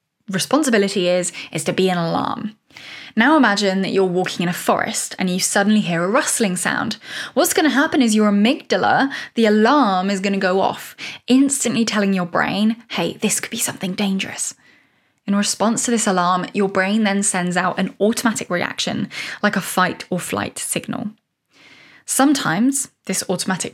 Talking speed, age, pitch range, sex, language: 170 wpm, 10-29, 185-230 Hz, female, English